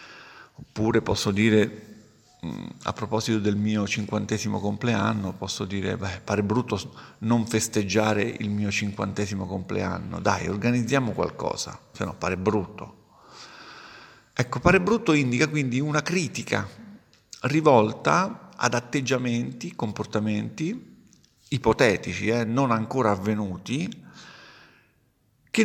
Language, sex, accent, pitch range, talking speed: Italian, male, native, 110-140 Hz, 105 wpm